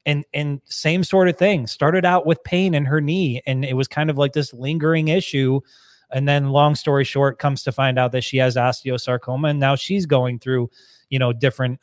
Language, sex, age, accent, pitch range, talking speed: English, male, 20-39, American, 125-150 Hz, 220 wpm